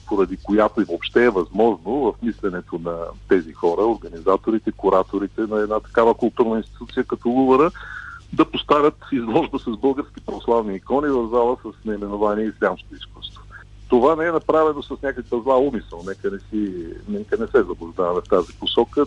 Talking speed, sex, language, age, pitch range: 160 wpm, male, Bulgarian, 40-59, 105-130 Hz